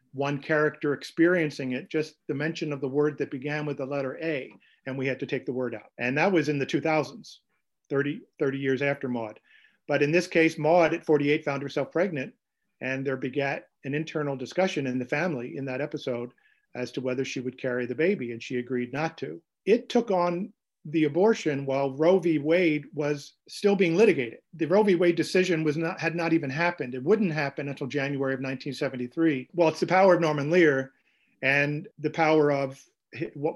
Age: 50-69